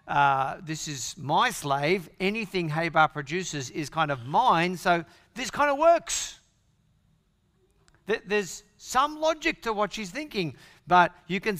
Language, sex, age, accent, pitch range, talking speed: English, male, 50-69, Australian, 130-190 Hz, 140 wpm